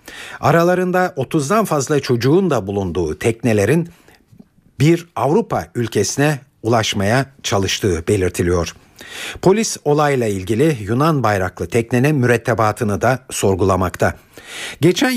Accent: native